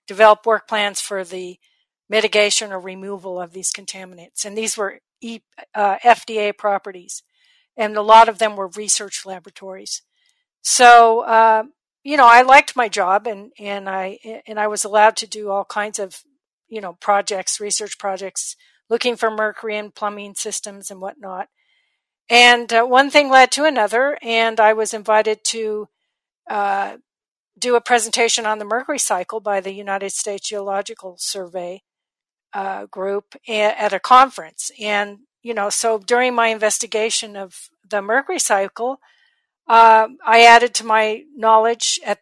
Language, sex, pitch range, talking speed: English, female, 205-235 Hz, 155 wpm